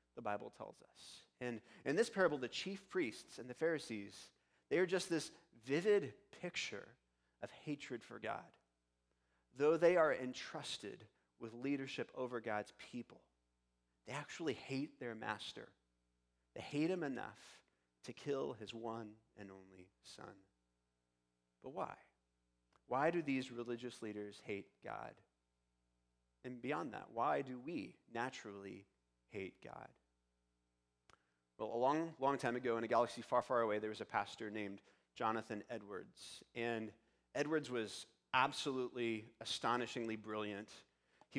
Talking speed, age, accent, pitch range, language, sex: 135 wpm, 30-49, American, 100-130 Hz, English, male